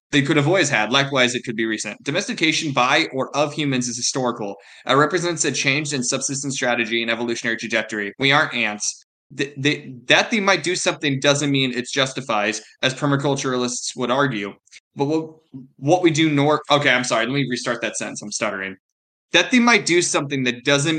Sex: male